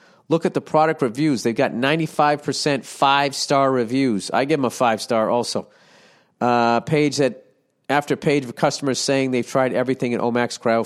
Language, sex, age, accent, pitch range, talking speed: English, male, 40-59, American, 110-140 Hz, 165 wpm